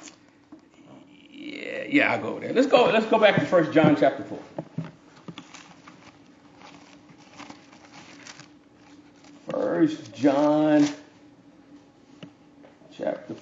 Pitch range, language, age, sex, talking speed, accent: 225-310 Hz, English, 50-69, male, 80 wpm, American